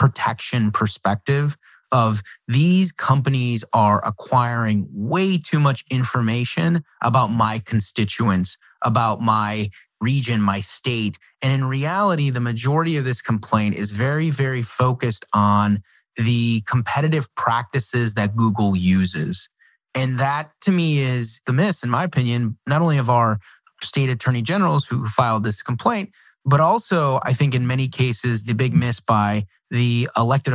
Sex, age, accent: male, 30-49, American